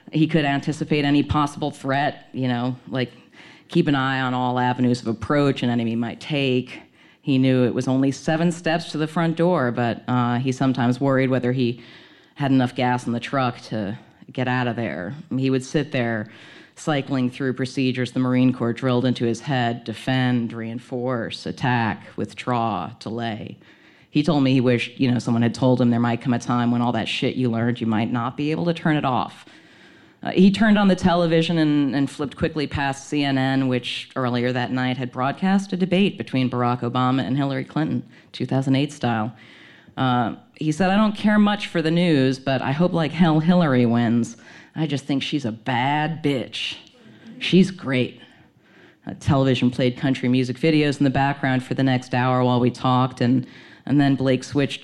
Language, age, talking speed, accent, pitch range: English, 40-59, 190 wpm, American, 125-145 Hz